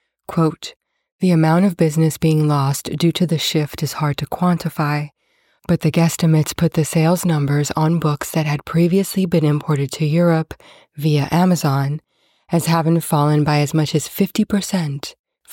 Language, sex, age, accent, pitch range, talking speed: English, female, 20-39, American, 150-170 Hz, 160 wpm